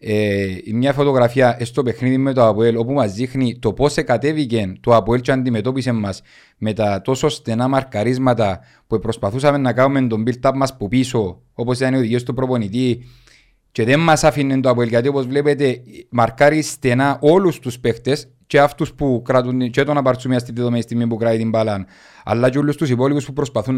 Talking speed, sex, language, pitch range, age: 180 wpm, male, Greek, 120-150 Hz, 30-49